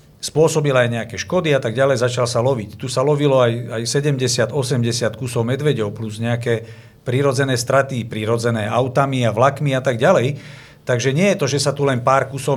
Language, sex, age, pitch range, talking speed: Slovak, male, 50-69, 120-155 Hz, 185 wpm